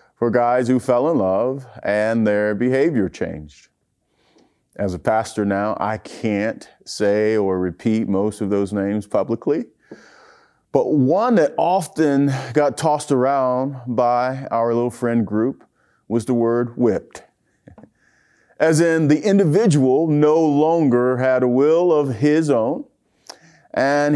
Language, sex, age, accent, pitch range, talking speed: English, male, 40-59, American, 115-160 Hz, 130 wpm